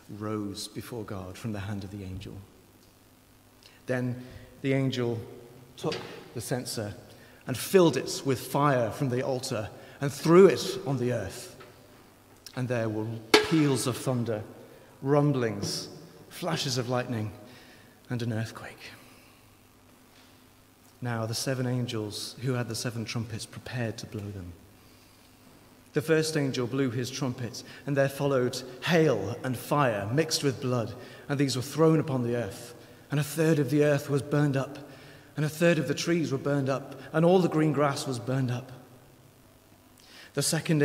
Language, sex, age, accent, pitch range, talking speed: English, male, 40-59, British, 120-145 Hz, 155 wpm